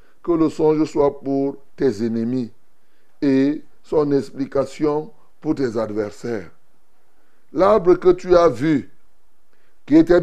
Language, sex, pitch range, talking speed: French, male, 140-190 Hz, 115 wpm